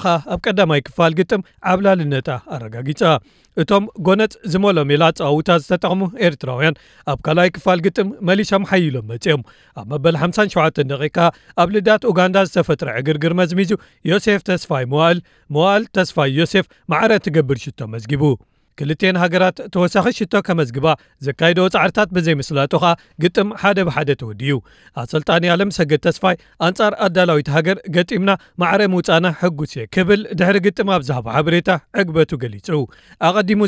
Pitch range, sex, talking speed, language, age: 150-190 Hz, male, 115 wpm, Amharic, 40-59